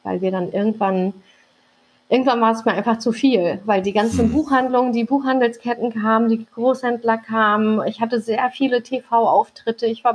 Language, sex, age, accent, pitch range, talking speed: German, female, 30-49, German, 215-245 Hz, 165 wpm